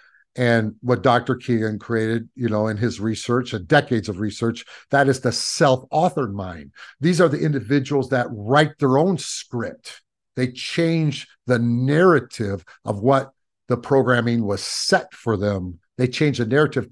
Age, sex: 50-69, male